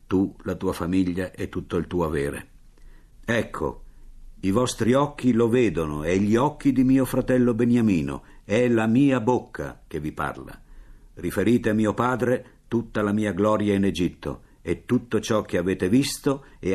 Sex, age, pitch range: male, 60-79, 85-120 Hz